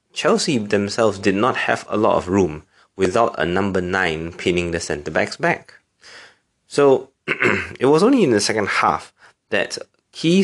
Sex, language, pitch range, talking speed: male, English, 90-115 Hz, 155 wpm